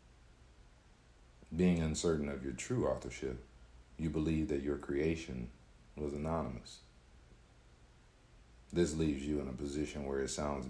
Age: 40-59